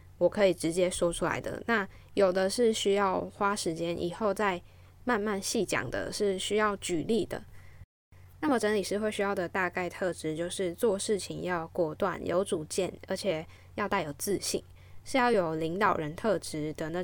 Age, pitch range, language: 10-29, 155-205 Hz, Chinese